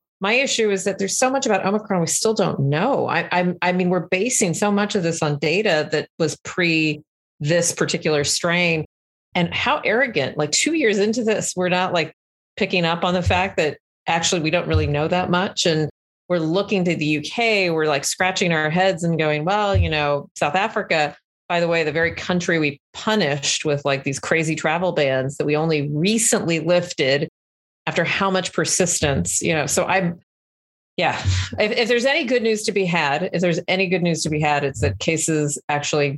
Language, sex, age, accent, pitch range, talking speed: English, female, 30-49, American, 145-185 Hz, 200 wpm